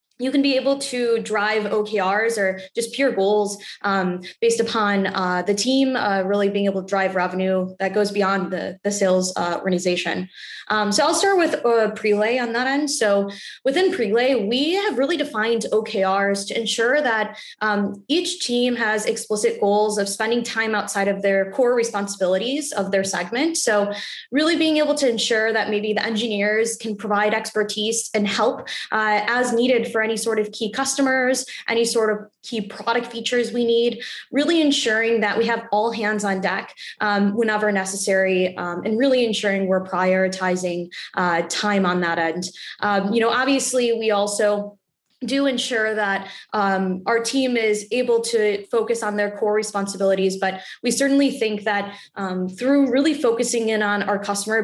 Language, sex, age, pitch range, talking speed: English, female, 10-29, 200-235 Hz, 175 wpm